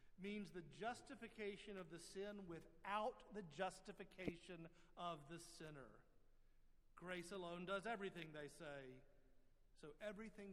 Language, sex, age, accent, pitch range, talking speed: English, male, 50-69, American, 135-200 Hz, 115 wpm